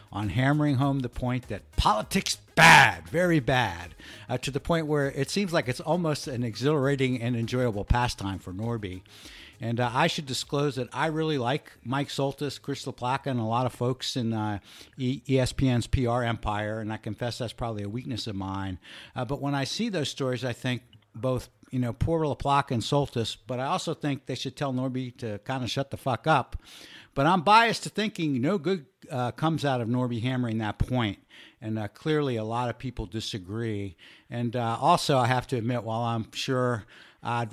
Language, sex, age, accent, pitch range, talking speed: English, male, 60-79, American, 110-135 Hz, 200 wpm